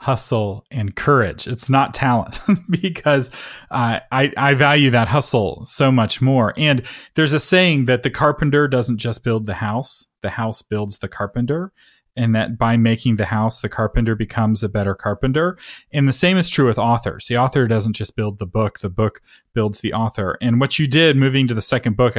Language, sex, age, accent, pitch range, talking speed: English, male, 30-49, American, 110-145 Hz, 195 wpm